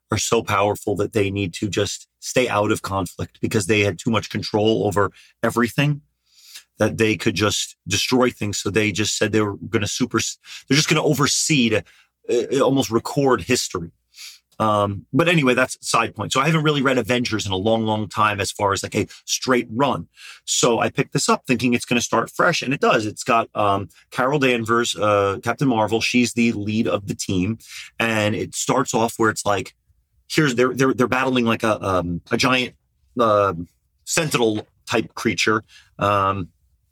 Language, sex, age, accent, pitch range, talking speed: English, male, 30-49, American, 105-130 Hz, 195 wpm